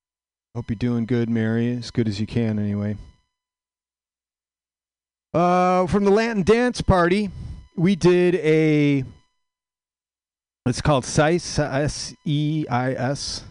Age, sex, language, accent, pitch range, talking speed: 40-59, male, English, American, 115-175 Hz, 105 wpm